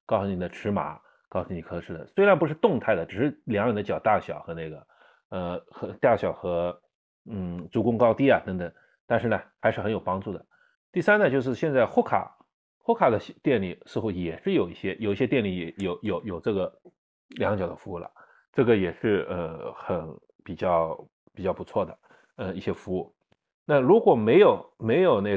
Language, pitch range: Chinese, 90-120 Hz